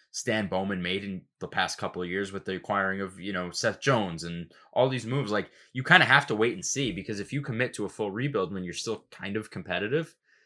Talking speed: 250 wpm